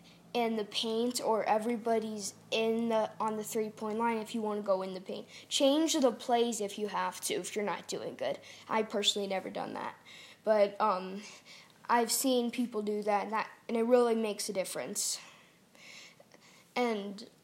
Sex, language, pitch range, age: female, English, 210-245 Hz, 10-29